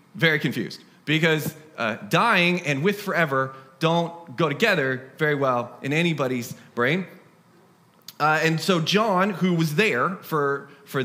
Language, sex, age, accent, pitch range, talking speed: English, male, 30-49, American, 135-175 Hz, 135 wpm